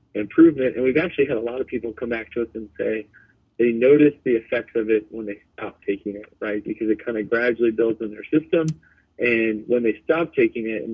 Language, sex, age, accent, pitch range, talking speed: English, male, 30-49, American, 105-120 Hz, 235 wpm